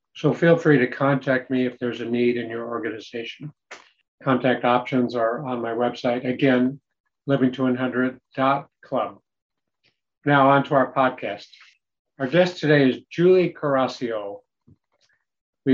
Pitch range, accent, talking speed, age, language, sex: 125-150 Hz, American, 125 wpm, 50-69, English, male